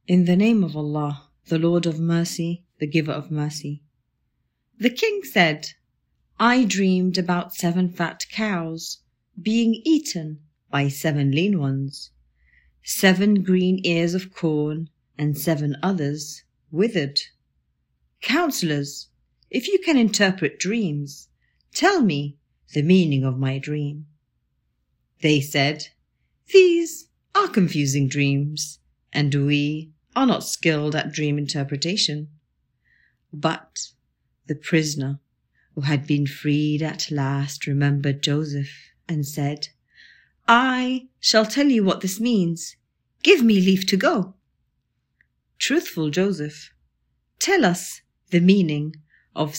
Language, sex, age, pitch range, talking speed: English, female, 40-59, 145-190 Hz, 115 wpm